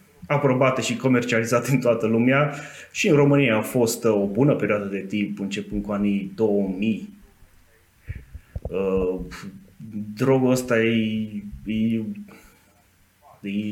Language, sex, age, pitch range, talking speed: Romanian, male, 20-39, 100-120 Hz, 100 wpm